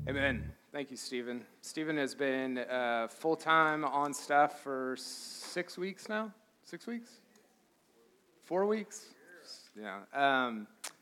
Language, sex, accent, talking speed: English, male, American, 115 wpm